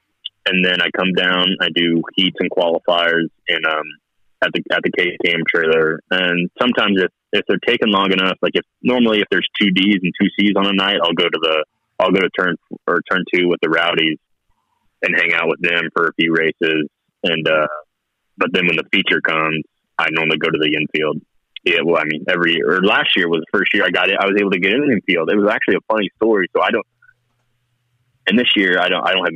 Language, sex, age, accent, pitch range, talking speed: English, male, 20-39, American, 80-120 Hz, 235 wpm